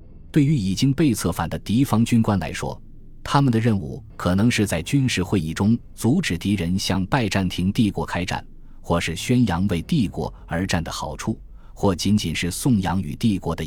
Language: Chinese